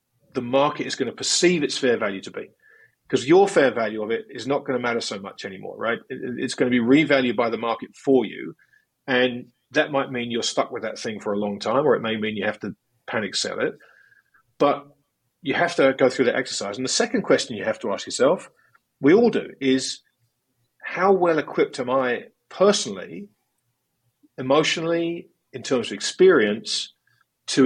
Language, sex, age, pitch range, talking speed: English, male, 40-59, 120-155 Hz, 200 wpm